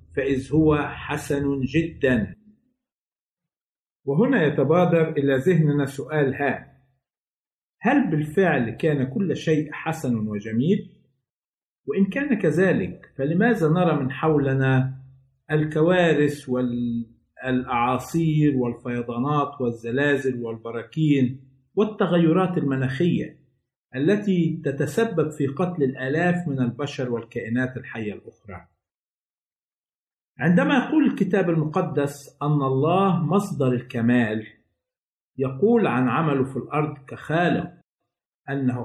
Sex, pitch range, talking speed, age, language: male, 130-170 Hz, 85 wpm, 50-69, Arabic